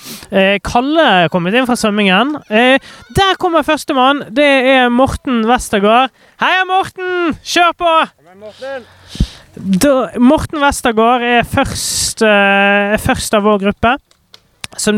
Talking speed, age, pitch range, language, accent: 120 wpm, 30-49, 185-265 Hz, English, Swedish